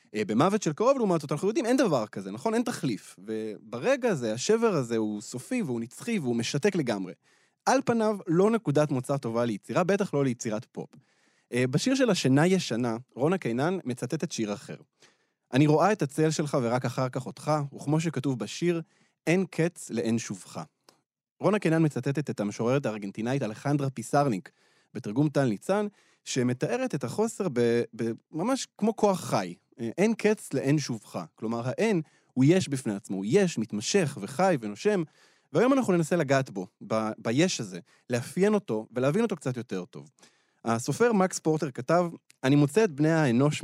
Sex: male